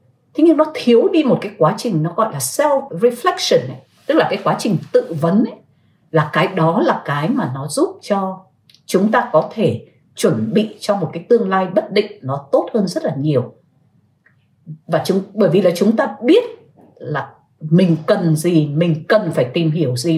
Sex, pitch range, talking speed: female, 160-235 Hz, 200 wpm